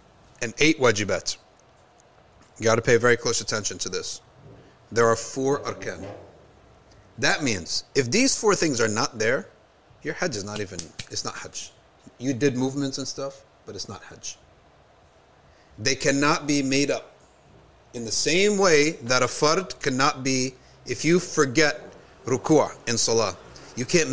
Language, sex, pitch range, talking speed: English, male, 115-160 Hz, 155 wpm